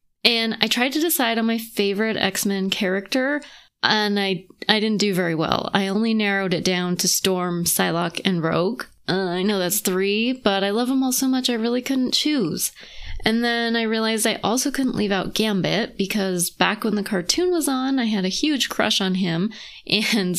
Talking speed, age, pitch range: 200 wpm, 20-39, 185-225 Hz